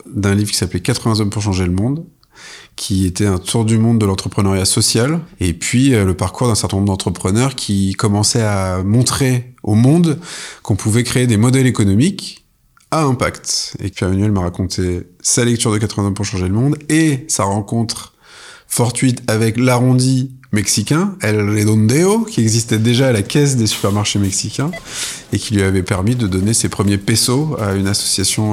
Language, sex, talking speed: French, male, 180 wpm